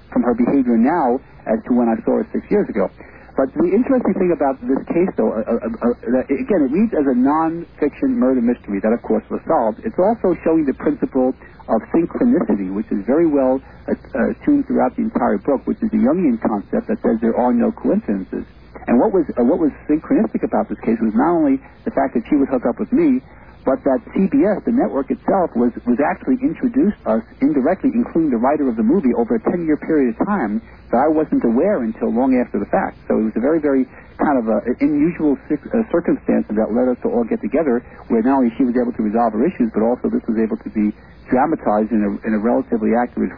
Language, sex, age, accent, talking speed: English, male, 50-69, American, 230 wpm